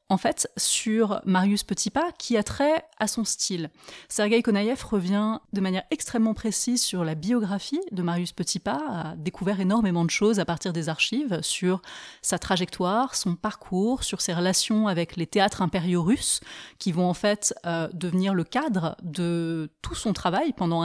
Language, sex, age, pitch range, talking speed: French, female, 30-49, 180-235 Hz, 170 wpm